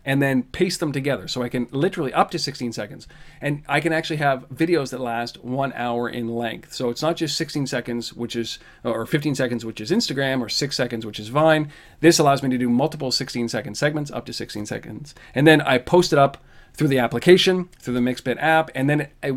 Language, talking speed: English, 230 wpm